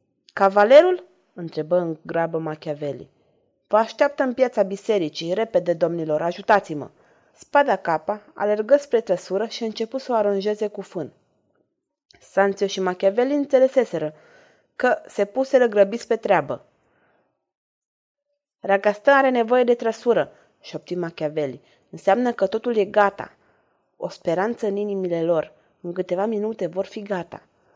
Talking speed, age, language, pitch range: 130 wpm, 30-49, Romanian, 180-245 Hz